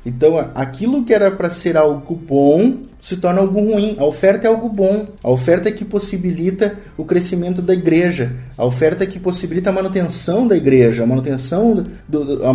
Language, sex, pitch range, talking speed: Portuguese, male, 150-200 Hz, 175 wpm